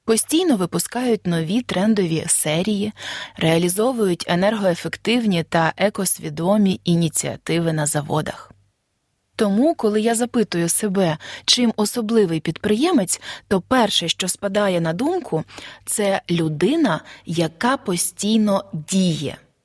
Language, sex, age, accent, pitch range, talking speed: Ukrainian, female, 20-39, native, 170-225 Hz, 100 wpm